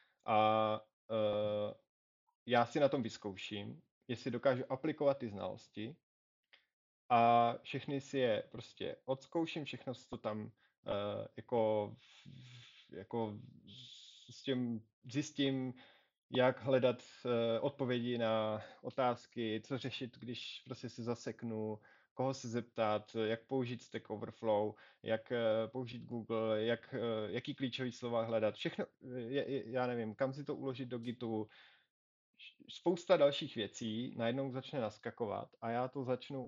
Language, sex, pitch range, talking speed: Slovak, male, 110-130 Hz, 125 wpm